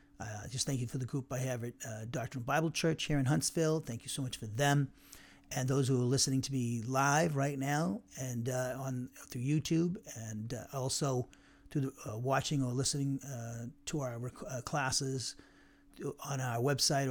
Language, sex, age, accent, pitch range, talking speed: English, male, 40-59, American, 125-145 Hz, 200 wpm